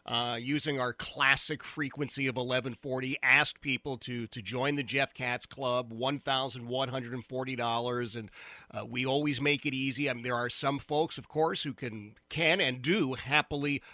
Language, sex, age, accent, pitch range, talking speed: English, male, 40-59, American, 125-150 Hz, 170 wpm